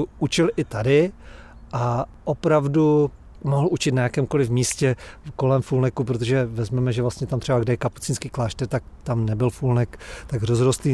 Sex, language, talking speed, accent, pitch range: male, Czech, 155 wpm, native, 130-170 Hz